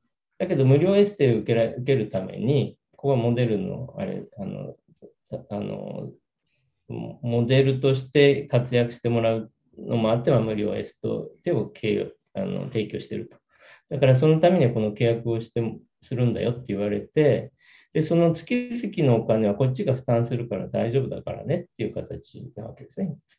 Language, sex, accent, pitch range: Japanese, male, native, 110-165 Hz